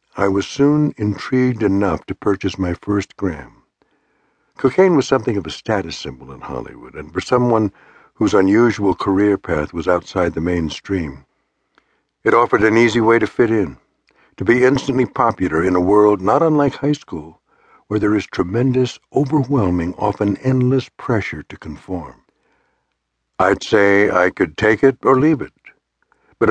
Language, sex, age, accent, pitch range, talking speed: English, male, 60-79, American, 95-125 Hz, 155 wpm